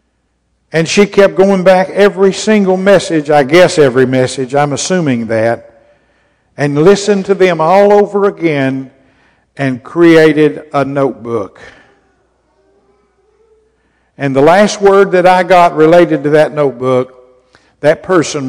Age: 60-79